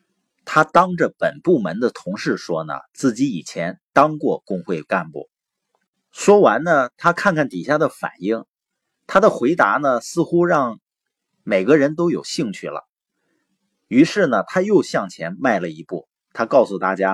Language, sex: Chinese, male